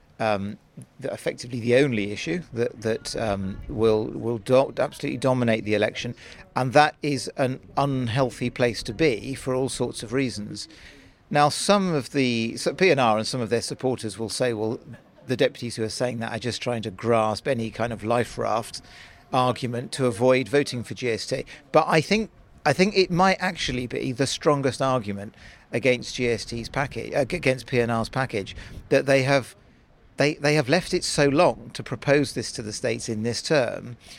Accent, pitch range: British, 115-140 Hz